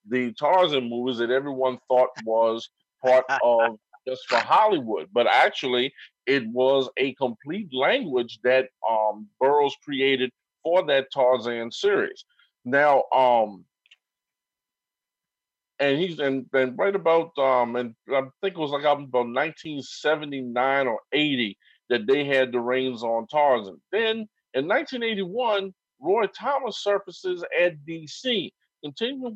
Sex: male